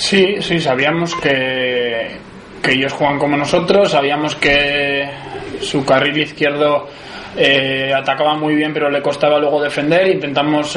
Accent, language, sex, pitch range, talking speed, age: Spanish, Spanish, male, 140-150 Hz, 135 wpm, 20-39